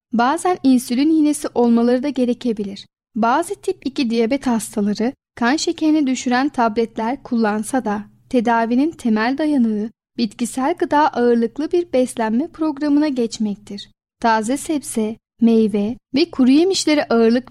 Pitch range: 225-285 Hz